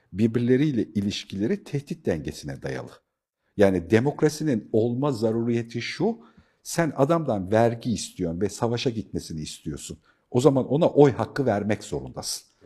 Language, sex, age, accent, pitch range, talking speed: Turkish, male, 50-69, native, 95-140 Hz, 120 wpm